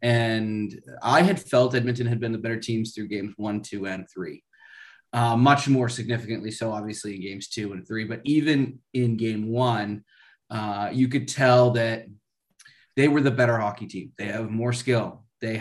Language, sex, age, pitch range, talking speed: English, male, 20-39, 110-135 Hz, 185 wpm